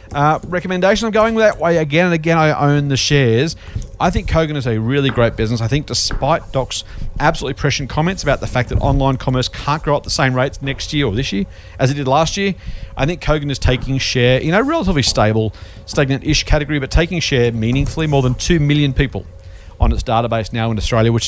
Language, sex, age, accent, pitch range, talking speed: English, male, 40-59, Australian, 105-145 Hz, 220 wpm